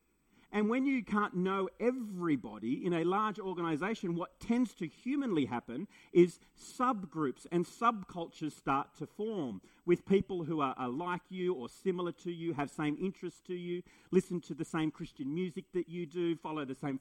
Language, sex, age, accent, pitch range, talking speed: English, male, 40-59, Australian, 150-195 Hz, 175 wpm